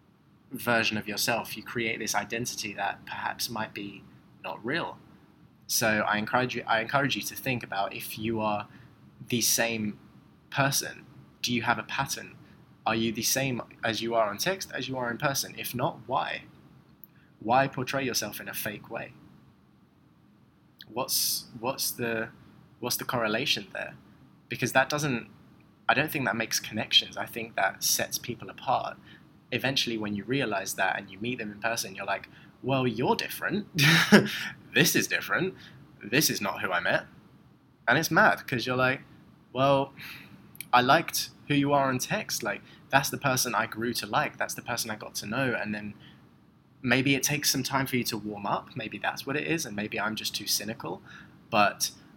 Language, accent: English, British